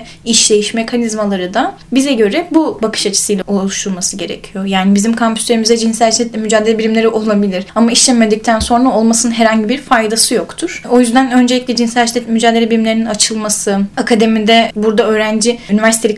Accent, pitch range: native, 205-240 Hz